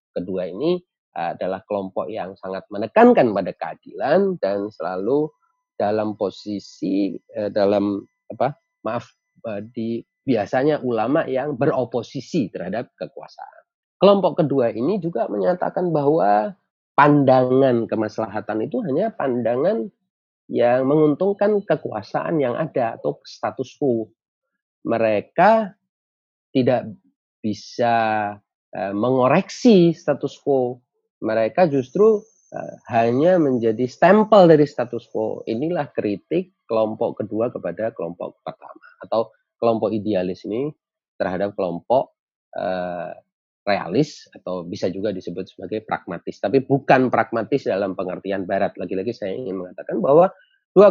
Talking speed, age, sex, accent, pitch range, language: 105 wpm, 40-59, male, native, 110-175 Hz, Indonesian